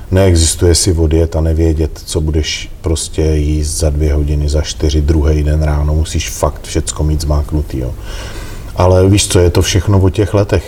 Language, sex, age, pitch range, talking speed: Slovak, male, 40-59, 75-85 Hz, 180 wpm